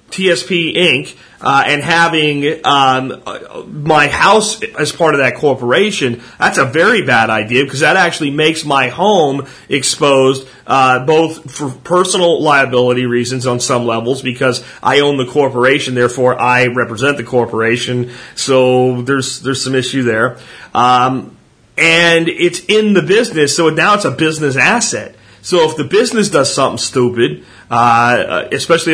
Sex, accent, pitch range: male, American, 125-155 Hz